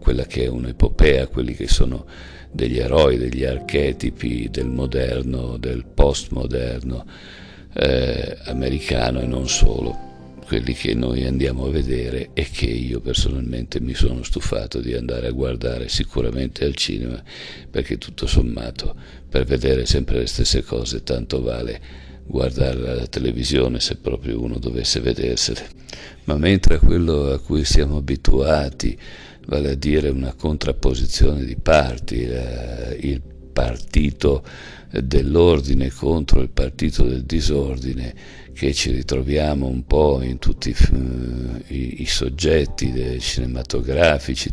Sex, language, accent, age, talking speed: male, Italian, native, 60-79, 125 wpm